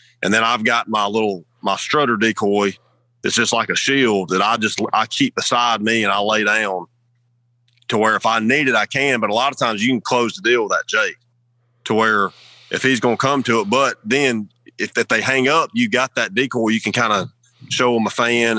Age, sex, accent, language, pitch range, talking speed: 30-49, male, American, English, 115-130 Hz, 240 wpm